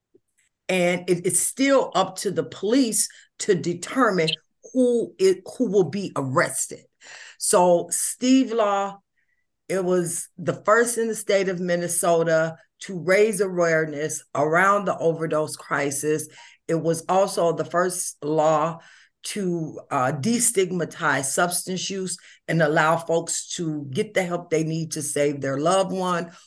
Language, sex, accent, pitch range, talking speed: English, female, American, 150-190 Hz, 130 wpm